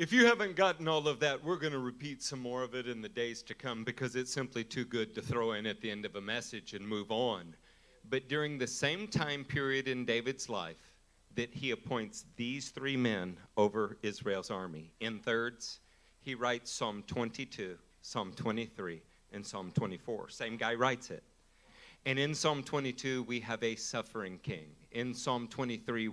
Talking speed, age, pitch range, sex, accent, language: 190 wpm, 50-69, 105-135 Hz, male, American, English